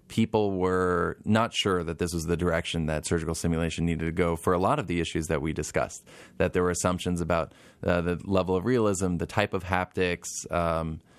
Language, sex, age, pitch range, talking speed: English, male, 20-39, 85-100 Hz, 210 wpm